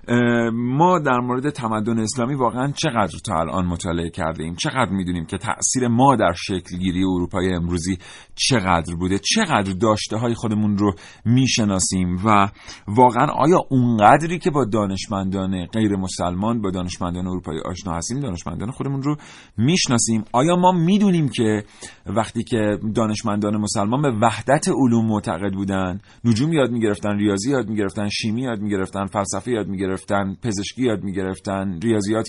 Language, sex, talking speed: Persian, male, 130 wpm